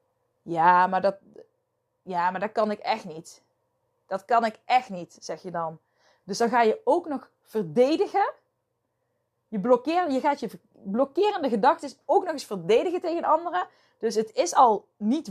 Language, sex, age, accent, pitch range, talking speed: Dutch, female, 20-39, Dutch, 205-285 Hz, 165 wpm